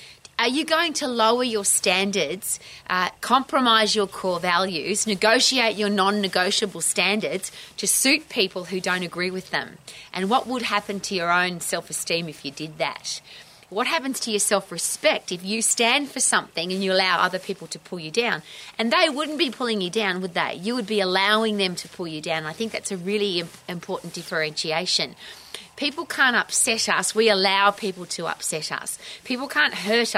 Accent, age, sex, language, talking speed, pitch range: Australian, 30-49, female, English, 185 wpm, 185-230 Hz